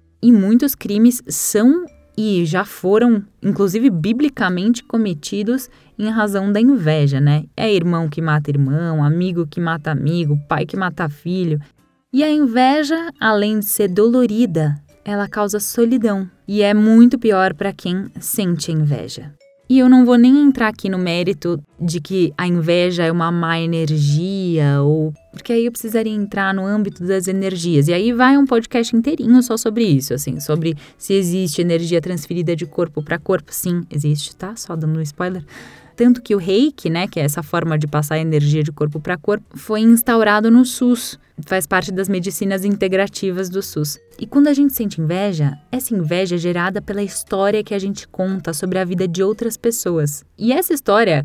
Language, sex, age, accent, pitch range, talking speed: Portuguese, female, 10-29, Brazilian, 165-220 Hz, 175 wpm